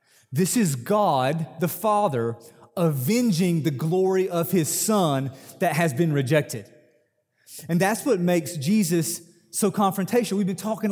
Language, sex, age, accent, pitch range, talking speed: English, male, 30-49, American, 170-230 Hz, 135 wpm